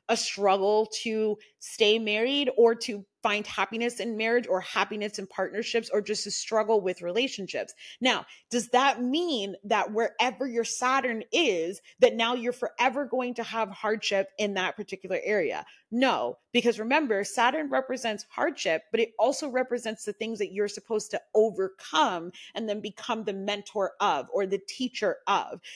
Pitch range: 205-255 Hz